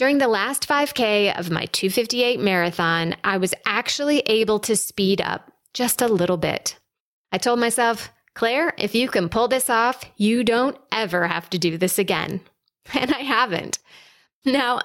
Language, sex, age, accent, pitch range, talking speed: English, female, 30-49, American, 190-255 Hz, 165 wpm